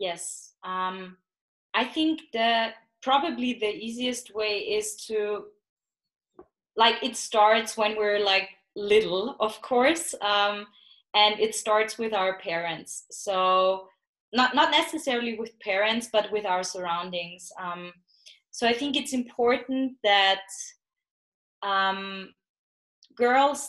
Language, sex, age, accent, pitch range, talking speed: English, female, 20-39, German, 195-230 Hz, 115 wpm